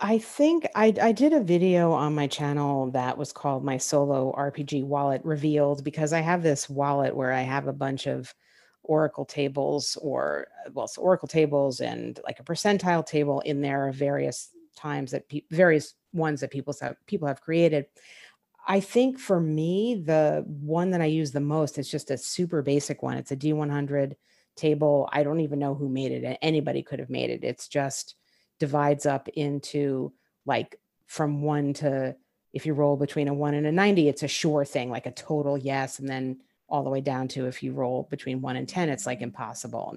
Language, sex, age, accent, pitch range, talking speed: English, female, 40-59, American, 140-160 Hz, 200 wpm